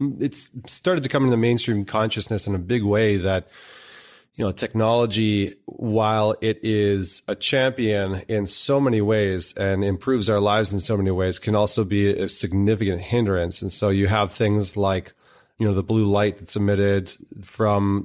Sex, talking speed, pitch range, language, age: male, 175 wpm, 100-110 Hz, English, 30-49